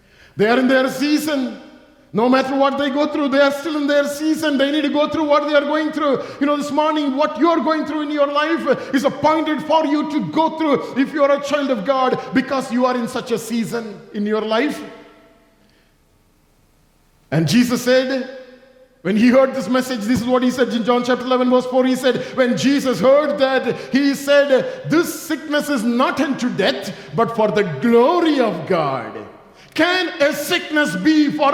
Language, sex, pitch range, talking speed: English, male, 255-300 Hz, 205 wpm